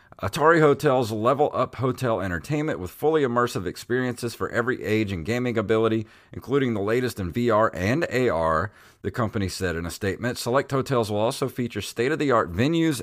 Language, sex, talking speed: English, male, 165 wpm